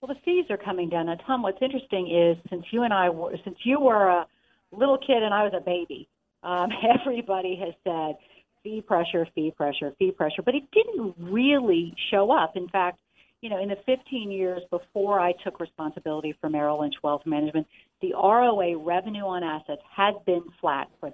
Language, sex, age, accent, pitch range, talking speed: English, female, 50-69, American, 160-210 Hz, 195 wpm